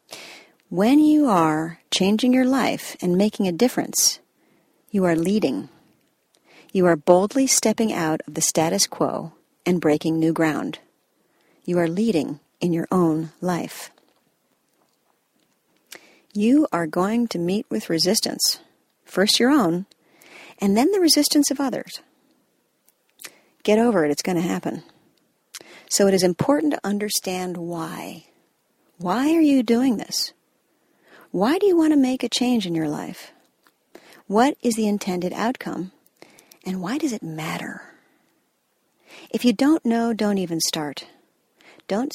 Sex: female